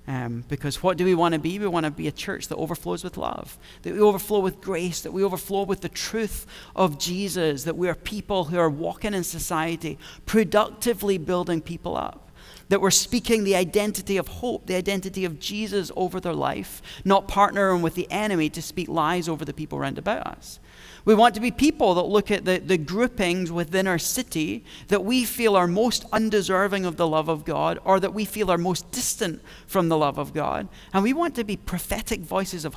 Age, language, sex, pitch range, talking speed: 40-59, English, male, 165-205 Hz, 215 wpm